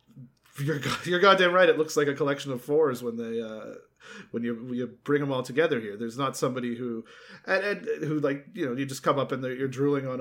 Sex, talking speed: male, 240 wpm